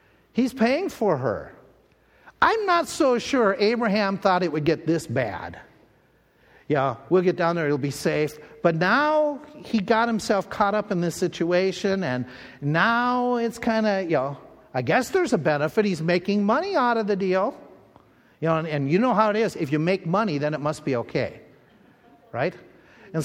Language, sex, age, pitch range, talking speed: English, male, 50-69, 130-200 Hz, 185 wpm